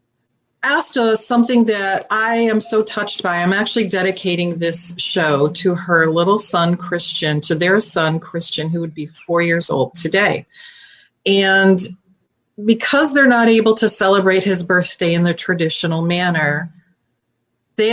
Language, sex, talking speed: English, female, 145 wpm